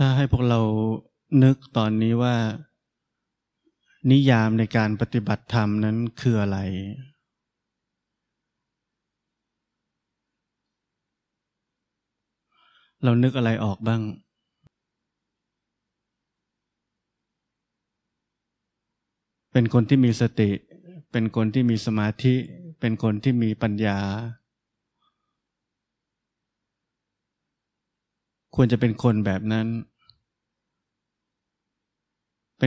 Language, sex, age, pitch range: Thai, male, 20-39, 110-130 Hz